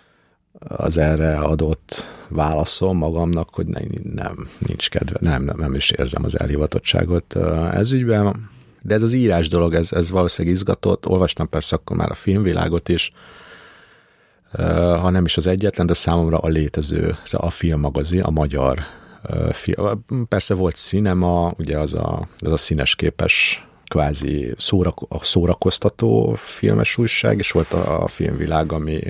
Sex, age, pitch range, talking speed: male, 50-69, 80-95 Hz, 140 wpm